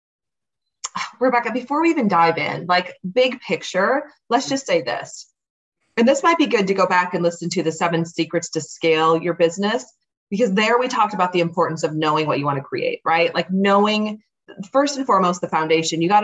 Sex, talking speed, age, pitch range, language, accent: female, 205 wpm, 30-49, 165-235 Hz, English, American